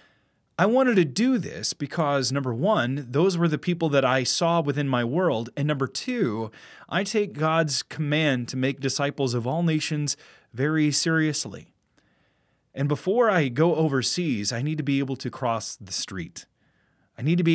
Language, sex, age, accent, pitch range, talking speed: English, male, 30-49, American, 125-160 Hz, 175 wpm